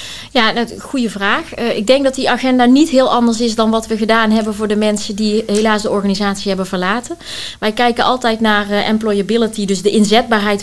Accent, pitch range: Dutch, 210-240 Hz